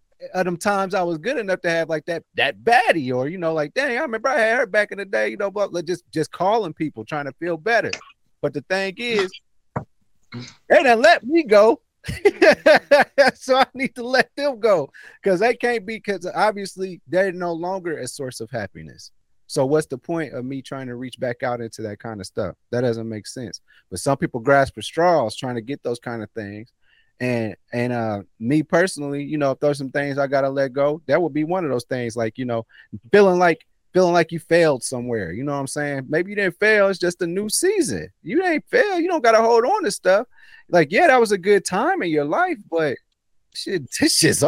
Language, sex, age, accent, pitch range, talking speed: English, male, 30-49, American, 135-205 Hz, 230 wpm